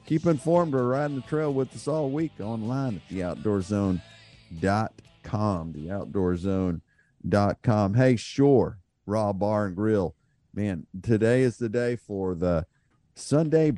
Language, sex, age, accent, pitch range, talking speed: English, male, 50-69, American, 95-125 Hz, 120 wpm